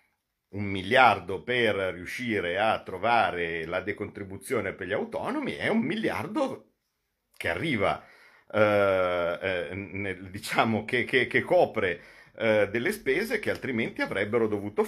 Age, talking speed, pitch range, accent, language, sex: 50-69, 125 wpm, 100-120 Hz, native, Italian, male